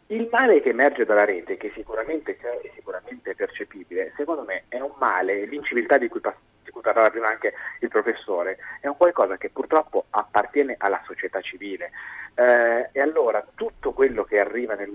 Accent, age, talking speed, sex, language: native, 30-49, 170 wpm, male, Italian